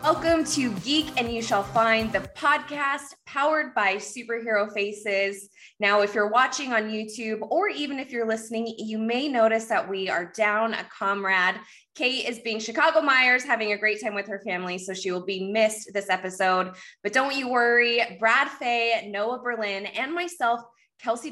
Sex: female